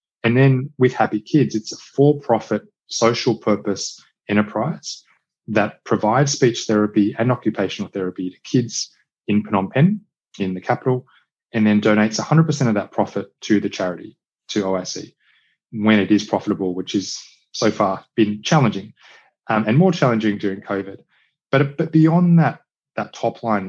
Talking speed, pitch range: 155 wpm, 105-130 Hz